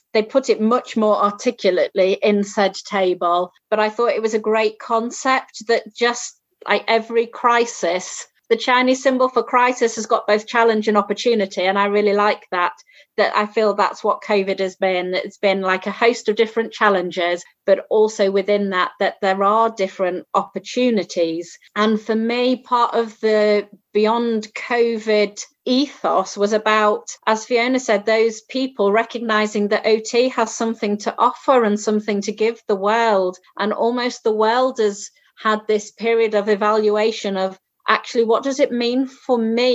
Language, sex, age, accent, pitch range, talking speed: English, female, 30-49, British, 205-235 Hz, 165 wpm